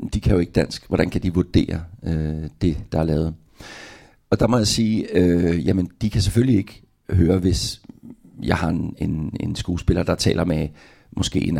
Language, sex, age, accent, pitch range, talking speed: Danish, male, 60-79, native, 90-105 Hz, 195 wpm